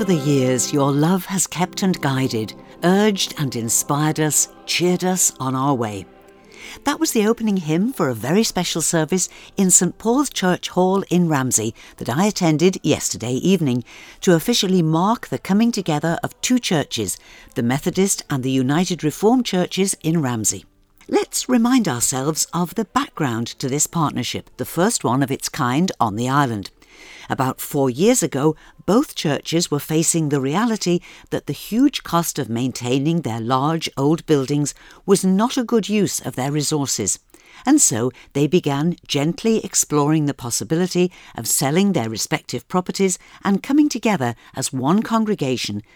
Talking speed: 160 wpm